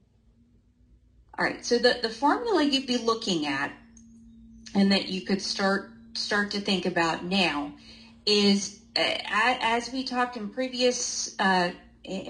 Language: English